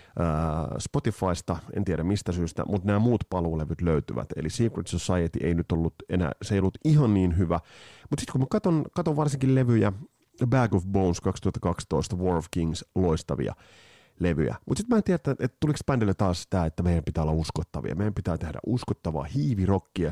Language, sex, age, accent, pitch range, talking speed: Finnish, male, 30-49, native, 85-110 Hz, 180 wpm